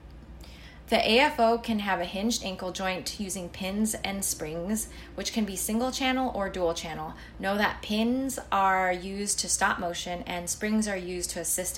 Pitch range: 170-205 Hz